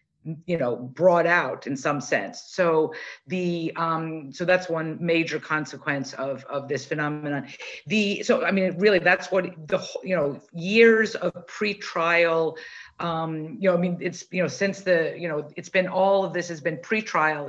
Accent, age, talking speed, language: American, 50-69, 180 wpm, English